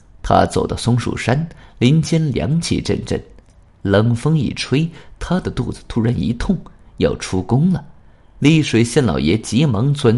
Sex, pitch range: male, 100-155 Hz